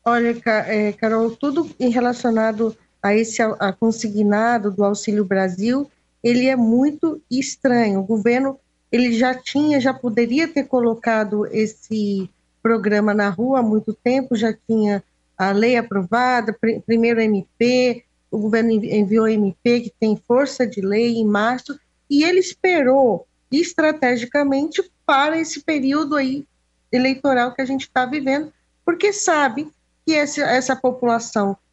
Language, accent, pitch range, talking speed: Portuguese, Brazilian, 220-275 Hz, 130 wpm